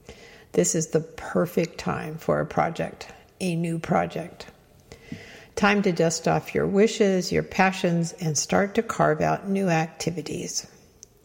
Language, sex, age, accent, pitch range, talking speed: English, female, 60-79, American, 160-200 Hz, 140 wpm